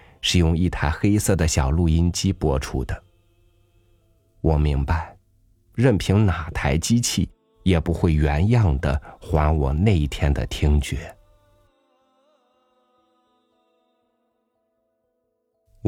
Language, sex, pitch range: Chinese, male, 80-105 Hz